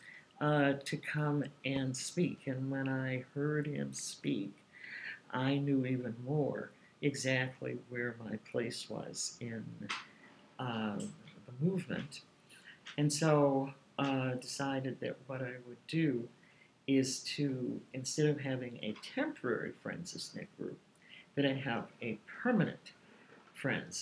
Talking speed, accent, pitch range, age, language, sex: 125 wpm, American, 125-150 Hz, 50-69, English, male